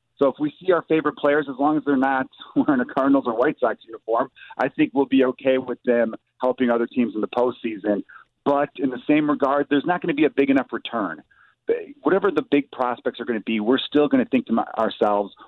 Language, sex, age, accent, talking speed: English, male, 40-59, American, 235 wpm